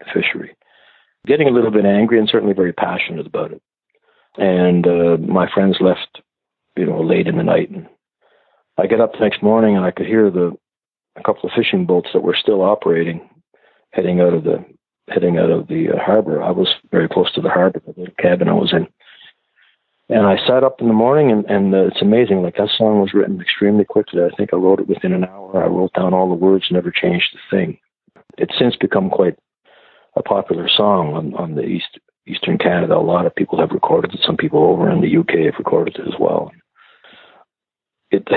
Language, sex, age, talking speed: English, male, 50-69, 215 wpm